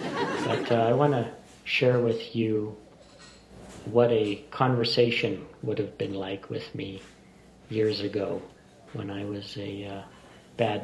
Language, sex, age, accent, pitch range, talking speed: English, male, 50-69, American, 105-130 Hz, 135 wpm